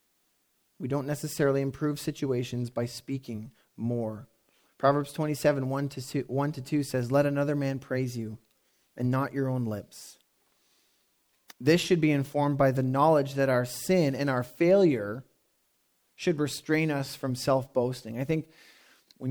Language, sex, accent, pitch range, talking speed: English, male, American, 130-155 Hz, 140 wpm